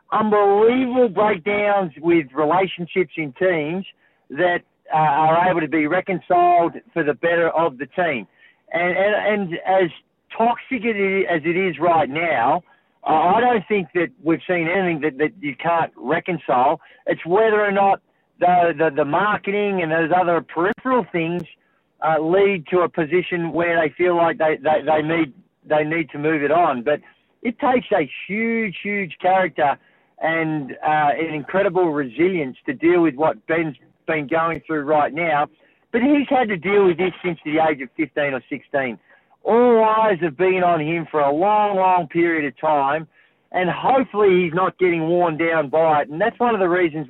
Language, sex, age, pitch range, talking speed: English, male, 50-69, 155-190 Hz, 175 wpm